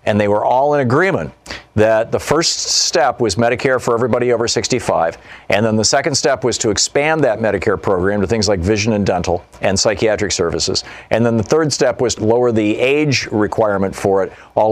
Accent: American